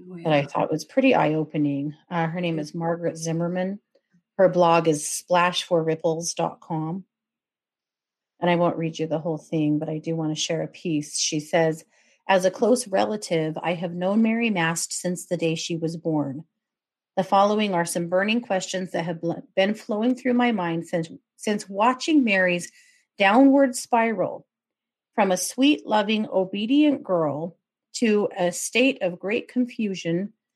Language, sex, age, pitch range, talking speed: English, female, 40-59, 170-225 Hz, 155 wpm